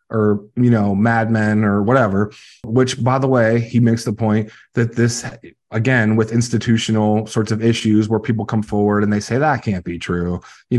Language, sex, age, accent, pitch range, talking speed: English, male, 20-39, American, 105-130 Hz, 190 wpm